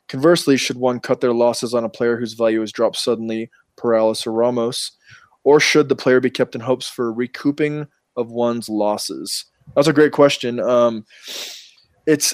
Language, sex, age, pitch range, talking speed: English, male, 20-39, 115-130 Hz, 180 wpm